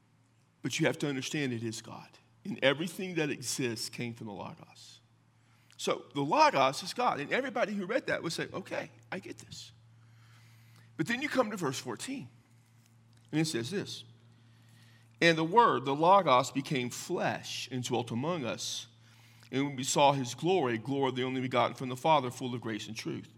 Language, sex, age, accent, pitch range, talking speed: English, male, 50-69, American, 115-145 Hz, 185 wpm